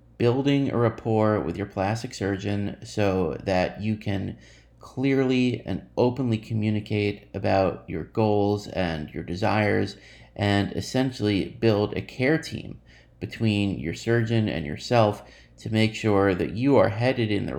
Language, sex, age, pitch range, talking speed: English, male, 30-49, 95-115 Hz, 140 wpm